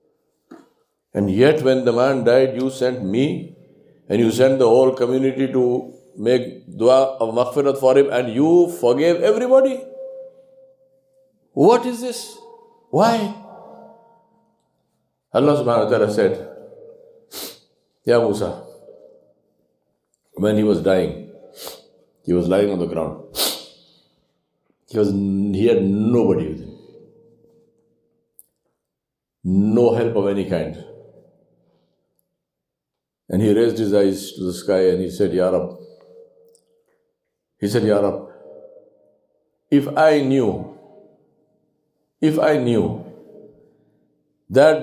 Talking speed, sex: 110 wpm, male